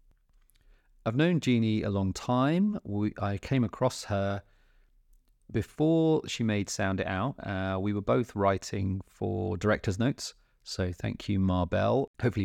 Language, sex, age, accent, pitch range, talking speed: English, male, 30-49, British, 90-105 Hz, 145 wpm